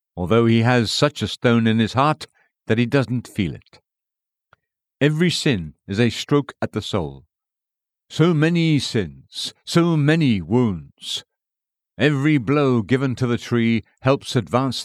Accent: British